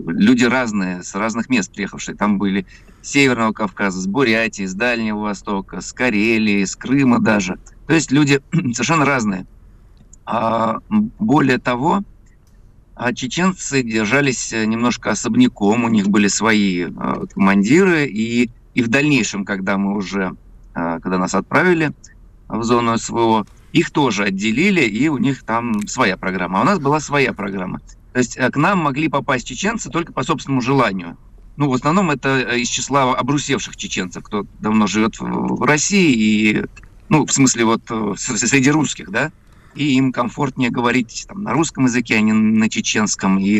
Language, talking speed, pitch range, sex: Russian, 145 wpm, 105-135 Hz, male